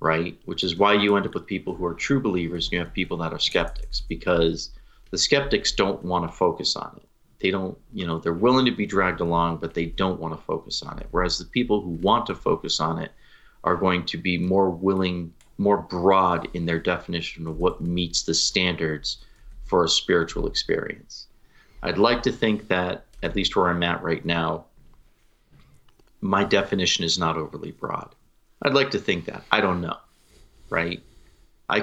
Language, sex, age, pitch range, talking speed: English, male, 40-59, 85-100 Hz, 195 wpm